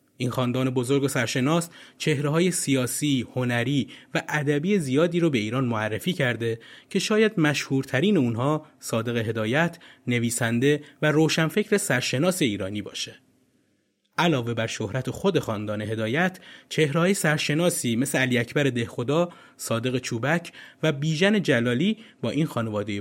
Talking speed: 130 wpm